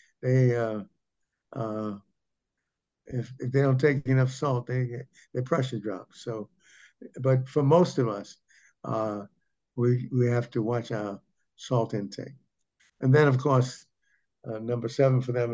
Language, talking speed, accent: English, 145 wpm, American